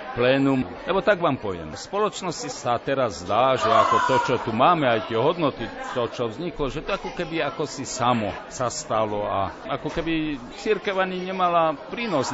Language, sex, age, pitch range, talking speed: Slovak, male, 50-69, 125-165 Hz, 185 wpm